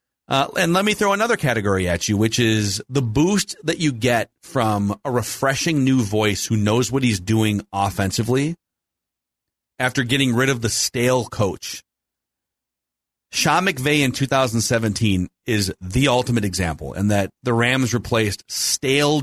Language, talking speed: English, 150 wpm